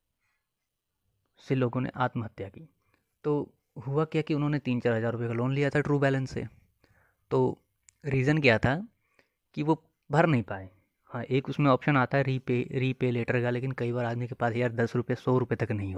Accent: native